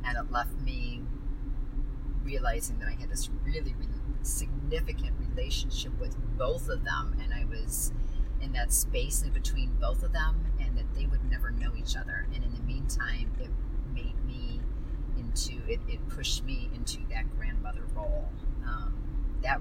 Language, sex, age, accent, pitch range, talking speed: English, female, 40-59, American, 95-130 Hz, 165 wpm